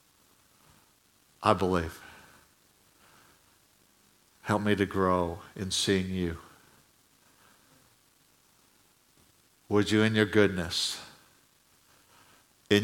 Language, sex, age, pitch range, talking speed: English, male, 60-79, 100-110 Hz, 70 wpm